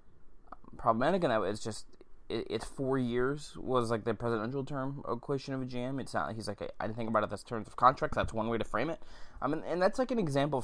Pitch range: 105-135 Hz